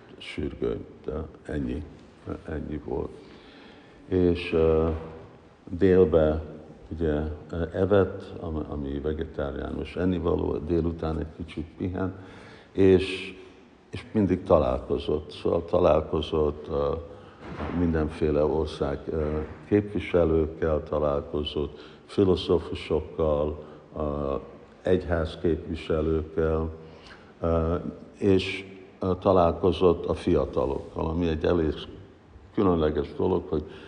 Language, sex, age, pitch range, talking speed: Hungarian, male, 60-79, 75-90 Hz, 80 wpm